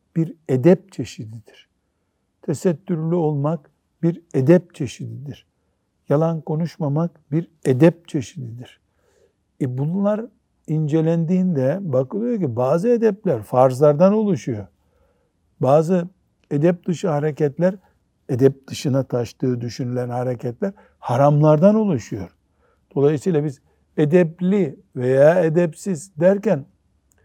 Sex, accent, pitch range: male, native, 125-175 Hz